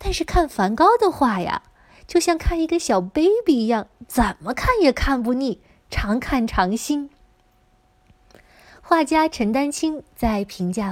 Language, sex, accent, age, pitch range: Chinese, female, native, 20-39, 205-320 Hz